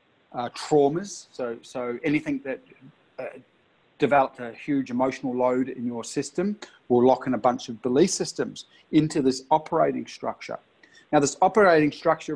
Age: 40-59